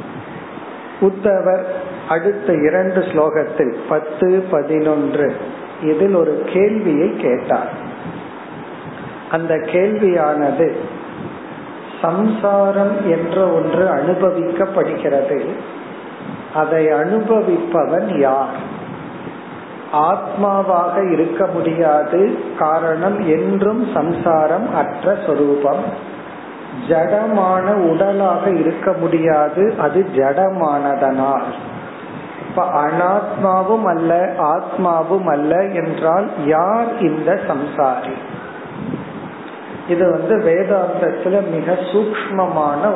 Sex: male